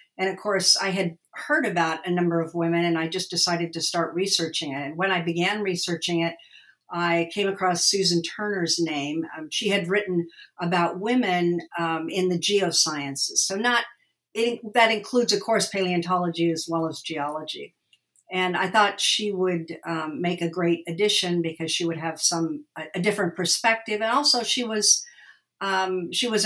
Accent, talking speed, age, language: American, 180 wpm, 50-69, English